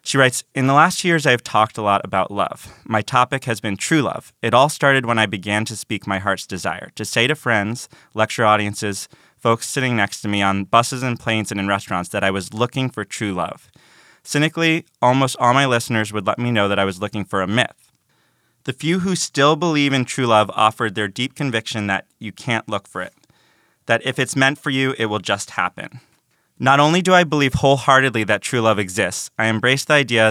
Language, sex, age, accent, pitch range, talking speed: English, male, 20-39, American, 105-130 Hz, 225 wpm